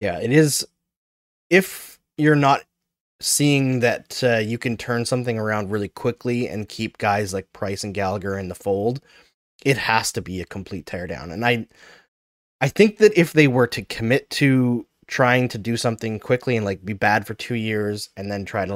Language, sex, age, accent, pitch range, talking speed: English, male, 20-39, American, 105-135 Hz, 190 wpm